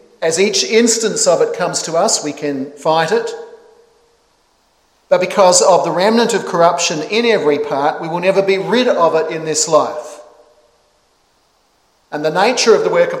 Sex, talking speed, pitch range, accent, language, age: male, 175 wpm, 155-220 Hz, Australian, English, 50-69